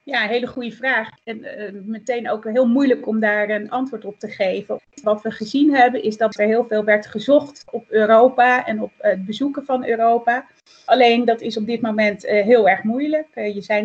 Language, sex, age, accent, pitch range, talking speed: Dutch, female, 30-49, Dutch, 210-250 Hz, 220 wpm